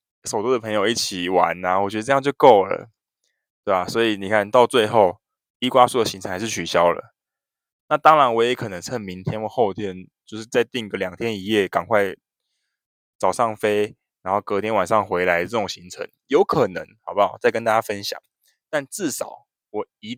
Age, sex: 20-39, male